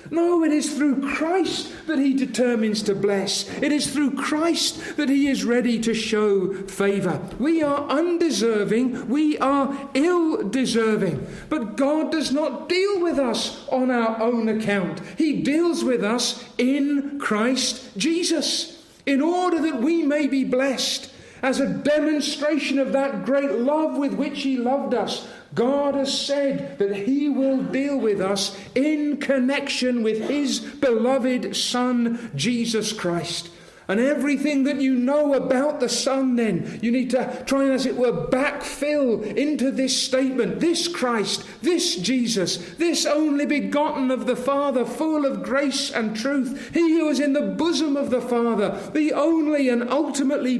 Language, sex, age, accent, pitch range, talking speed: English, male, 50-69, British, 235-290 Hz, 155 wpm